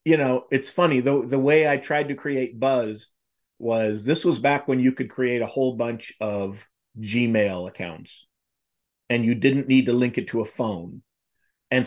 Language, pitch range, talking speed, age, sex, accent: English, 125-155 Hz, 185 wpm, 50-69, male, American